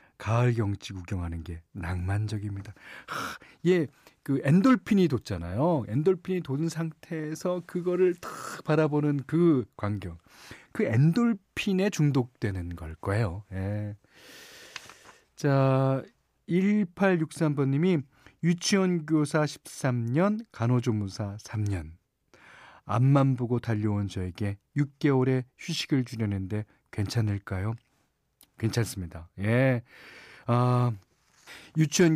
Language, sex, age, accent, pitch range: Korean, male, 40-59, native, 105-160 Hz